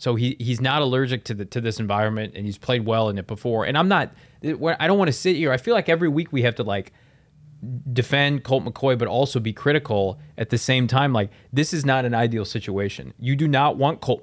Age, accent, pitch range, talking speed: 20-39, American, 110-140 Hz, 240 wpm